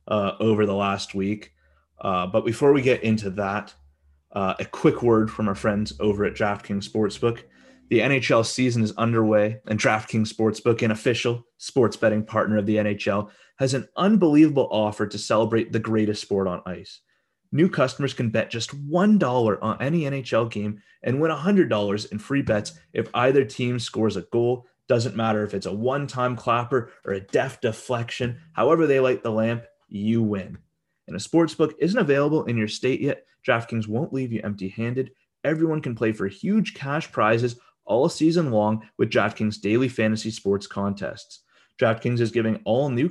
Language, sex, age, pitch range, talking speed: English, male, 30-49, 105-130 Hz, 175 wpm